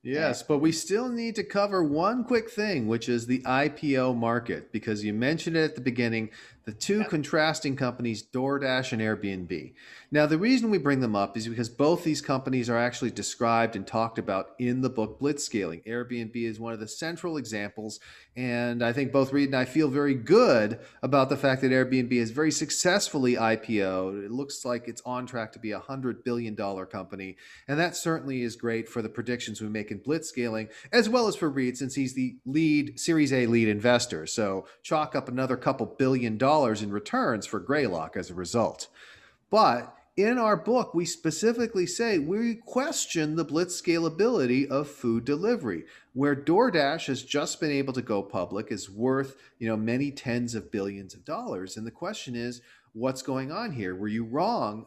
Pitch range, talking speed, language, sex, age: 115-150 Hz, 190 wpm, English, male, 40-59